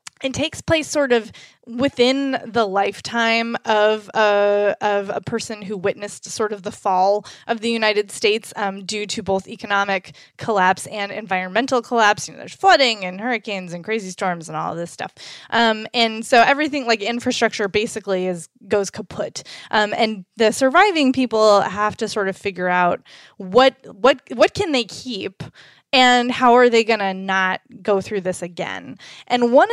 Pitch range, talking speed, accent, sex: 200-245 Hz, 175 wpm, American, female